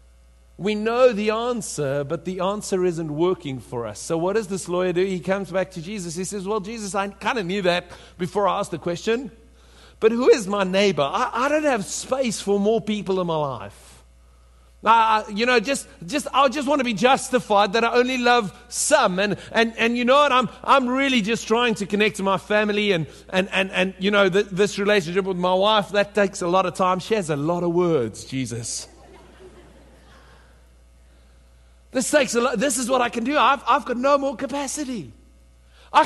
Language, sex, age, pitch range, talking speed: English, male, 50-69, 160-225 Hz, 210 wpm